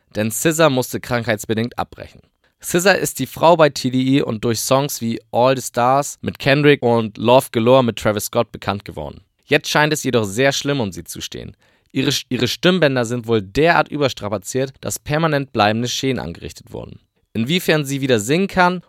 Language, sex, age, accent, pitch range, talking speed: German, male, 20-39, German, 110-140 Hz, 180 wpm